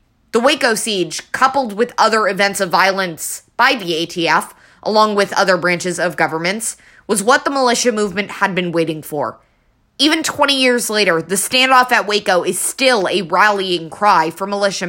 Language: English